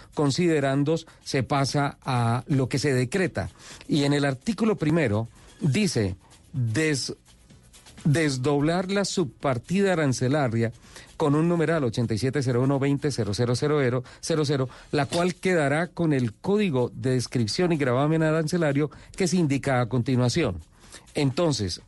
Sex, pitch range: male, 120-160 Hz